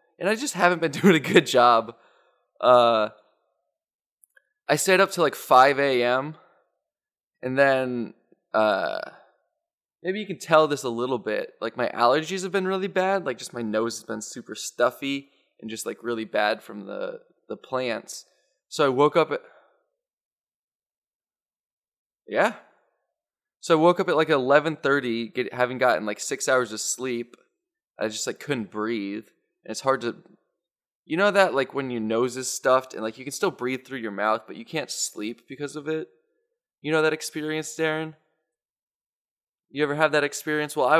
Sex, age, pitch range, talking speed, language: male, 20-39, 120-165 Hz, 175 wpm, English